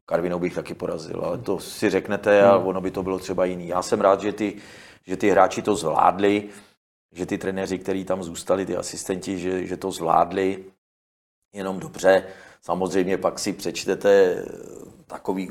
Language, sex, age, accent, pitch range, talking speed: Czech, male, 40-59, native, 85-100 Hz, 170 wpm